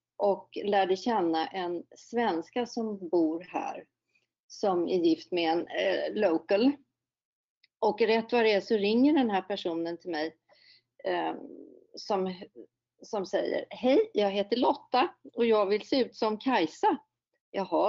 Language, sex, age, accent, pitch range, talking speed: Swedish, female, 40-59, native, 185-240 Hz, 145 wpm